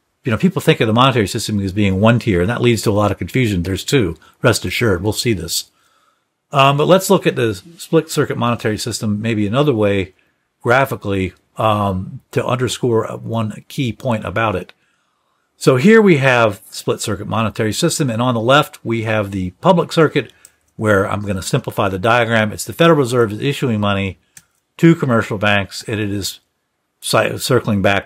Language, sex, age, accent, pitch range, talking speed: English, male, 50-69, American, 95-120 Hz, 180 wpm